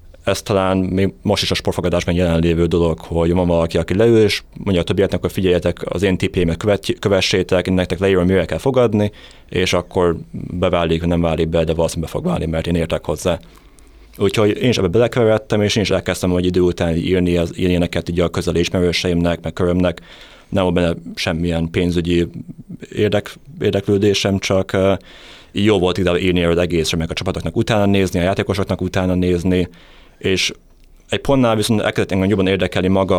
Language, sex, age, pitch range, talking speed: Hungarian, male, 30-49, 85-100 Hz, 170 wpm